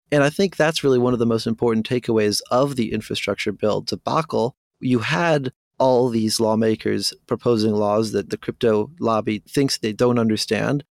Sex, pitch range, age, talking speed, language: male, 110-125 Hz, 30-49, 170 wpm, English